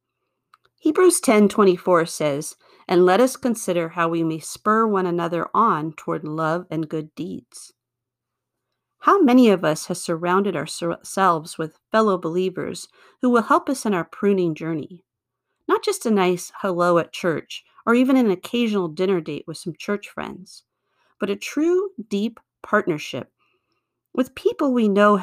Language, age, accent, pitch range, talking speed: English, 40-59, American, 155-210 Hz, 150 wpm